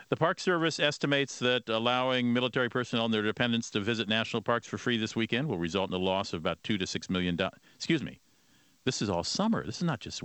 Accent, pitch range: American, 95-130 Hz